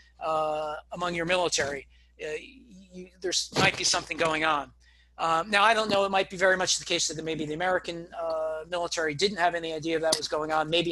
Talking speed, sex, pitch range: 215 wpm, male, 155-175 Hz